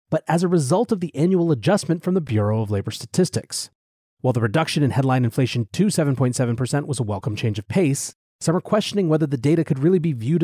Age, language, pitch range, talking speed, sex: 30-49, English, 120-160 Hz, 220 wpm, male